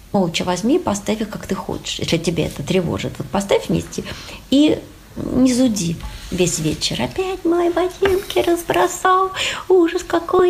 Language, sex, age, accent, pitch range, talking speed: Russian, female, 20-39, native, 175-280 Hz, 150 wpm